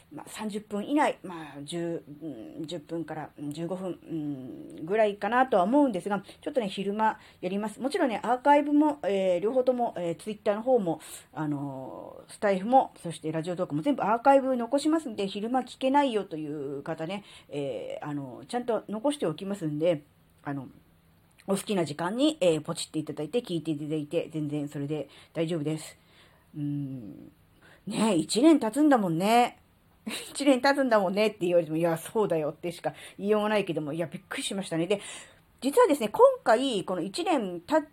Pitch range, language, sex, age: 165-255 Hz, Japanese, female, 40-59